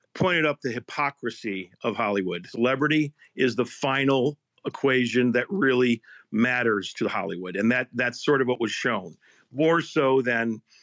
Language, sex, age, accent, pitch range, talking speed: English, male, 50-69, American, 120-140 Hz, 150 wpm